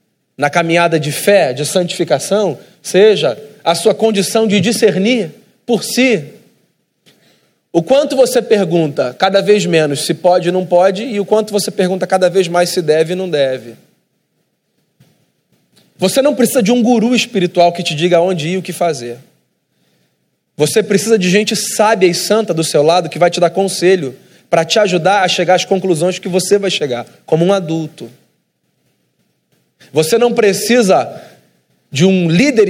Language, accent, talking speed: Portuguese, Brazilian, 165 wpm